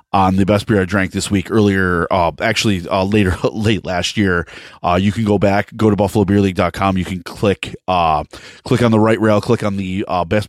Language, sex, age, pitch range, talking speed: English, male, 30-49, 95-110 Hz, 210 wpm